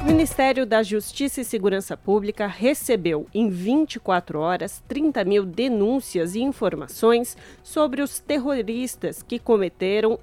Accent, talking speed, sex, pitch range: Brazilian, 125 wpm, female, 195-245 Hz